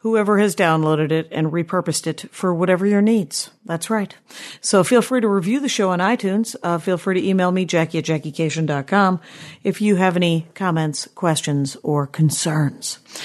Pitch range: 170-220 Hz